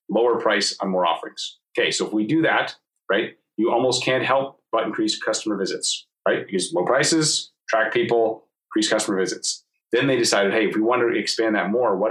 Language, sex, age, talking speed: English, male, 30-49, 205 wpm